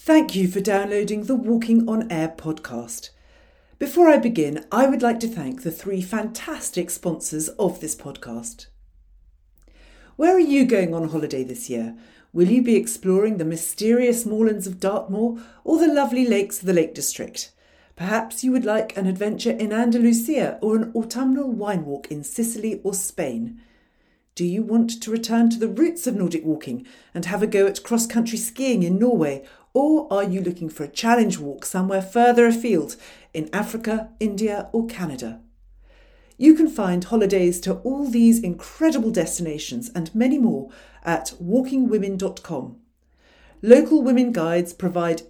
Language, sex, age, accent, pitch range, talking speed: English, female, 50-69, British, 165-235 Hz, 160 wpm